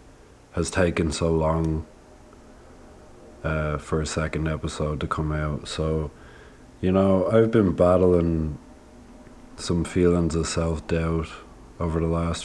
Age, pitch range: 30-49, 80-85 Hz